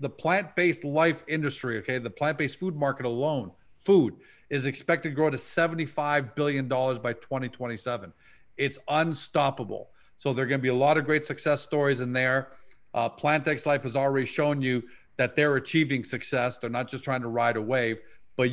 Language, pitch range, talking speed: English, 125-150 Hz, 180 wpm